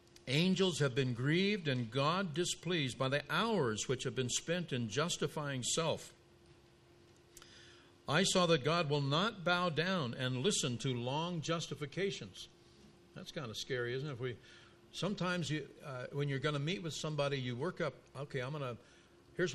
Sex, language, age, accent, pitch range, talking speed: male, English, 60-79, American, 115-150 Hz, 170 wpm